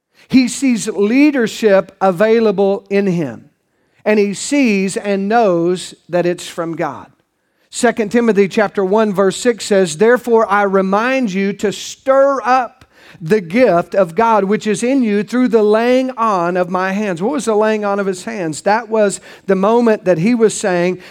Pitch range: 190-235 Hz